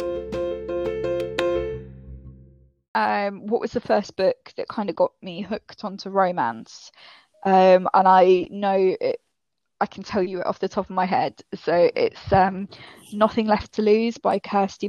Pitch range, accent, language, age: 185-220 Hz, British, English, 10-29